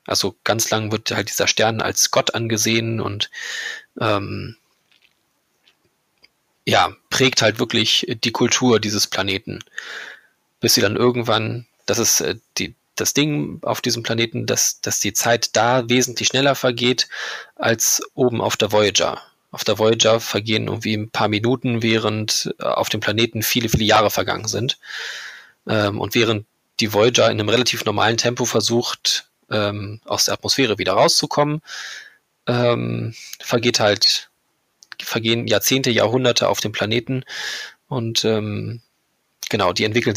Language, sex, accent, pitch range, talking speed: German, male, German, 110-125 Hz, 140 wpm